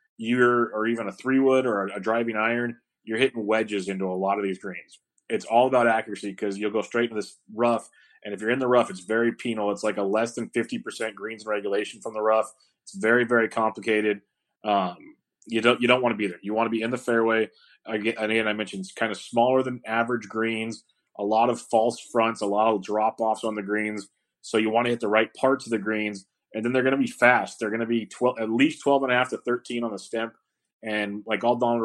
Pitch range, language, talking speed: 110-120 Hz, English, 255 wpm